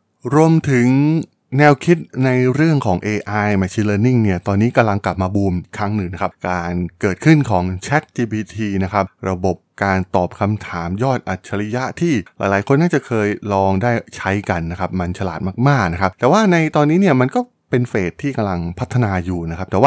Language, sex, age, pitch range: Thai, male, 20-39, 95-130 Hz